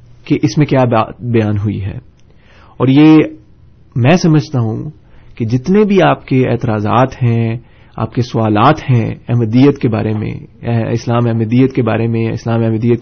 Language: Urdu